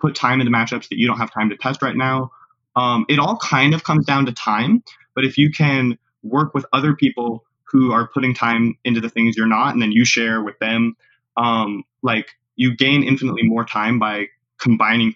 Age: 20-39